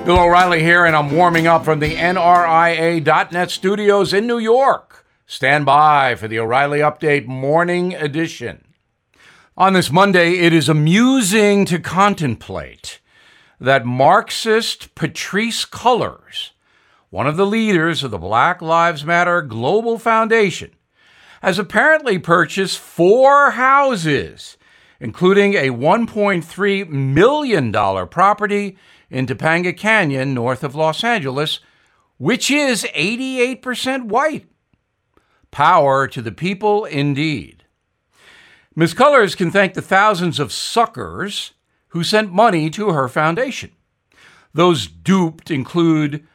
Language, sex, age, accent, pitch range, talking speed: English, male, 60-79, American, 150-205 Hz, 115 wpm